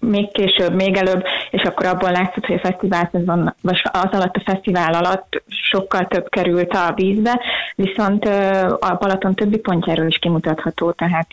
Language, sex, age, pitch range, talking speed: Hungarian, female, 20-39, 175-200 Hz, 150 wpm